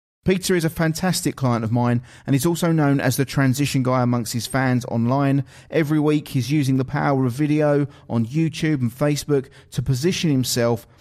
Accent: British